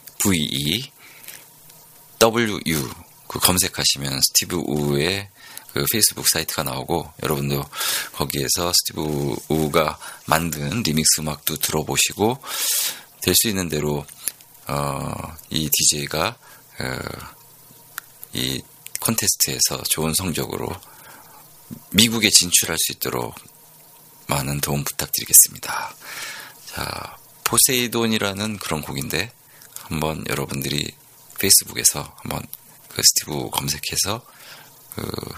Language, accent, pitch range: Korean, native, 75-95 Hz